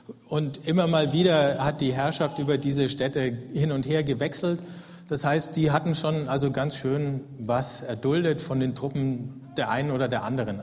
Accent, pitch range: German, 130-160 Hz